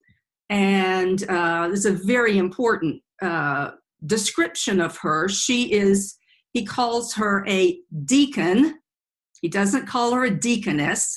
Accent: American